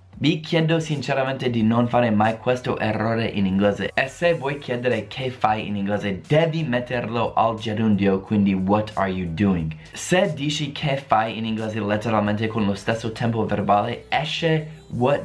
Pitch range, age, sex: 105-135 Hz, 20-39, male